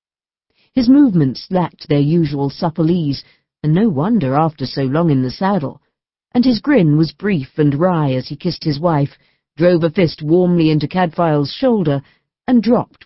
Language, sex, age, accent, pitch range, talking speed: English, female, 50-69, British, 145-185 Hz, 170 wpm